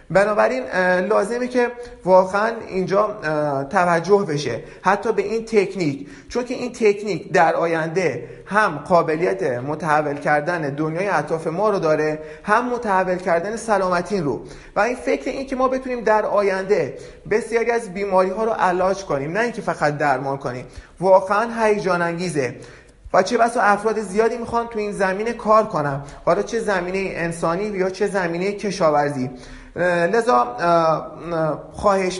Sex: male